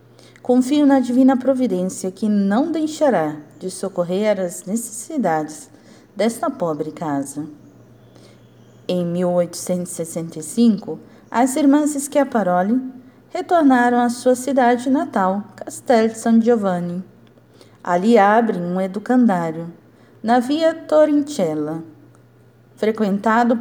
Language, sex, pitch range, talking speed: Portuguese, female, 180-270 Hz, 90 wpm